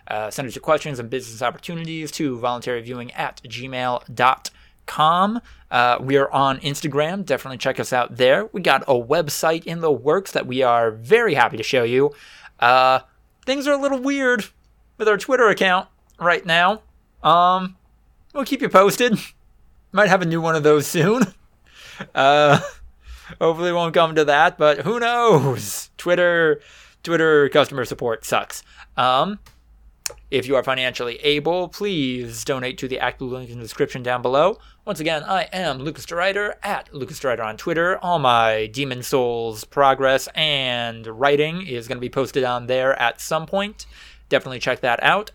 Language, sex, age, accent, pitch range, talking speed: English, male, 20-39, American, 120-170 Hz, 165 wpm